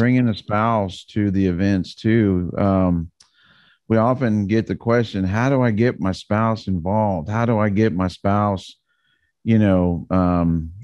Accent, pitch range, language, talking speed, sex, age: American, 95-120 Hz, English, 160 wpm, male, 40-59